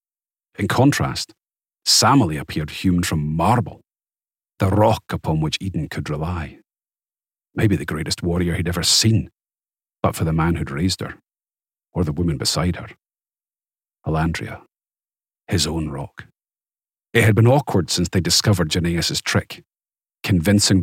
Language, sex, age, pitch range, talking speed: English, male, 40-59, 85-110 Hz, 135 wpm